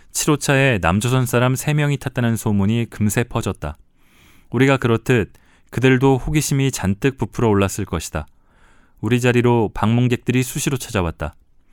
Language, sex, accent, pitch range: Korean, male, native, 100-130 Hz